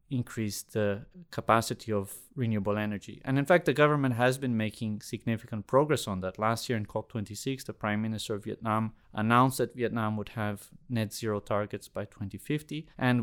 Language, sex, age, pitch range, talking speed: English, male, 20-39, 105-125 Hz, 170 wpm